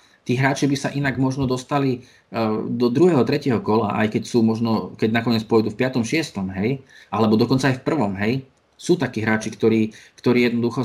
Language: Slovak